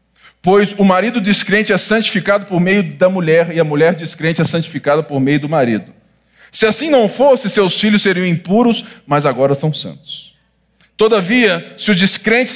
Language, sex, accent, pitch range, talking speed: Portuguese, male, Brazilian, 125-190 Hz, 170 wpm